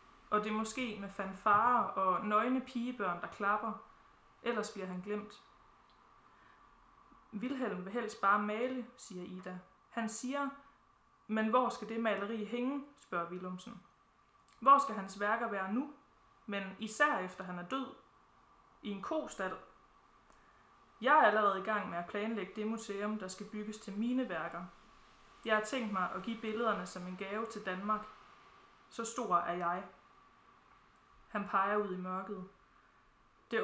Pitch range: 190-230 Hz